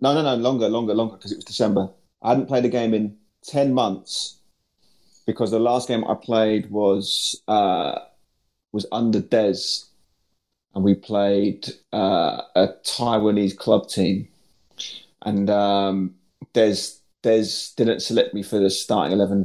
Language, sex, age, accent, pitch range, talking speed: English, male, 30-49, British, 95-125 Hz, 150 wpm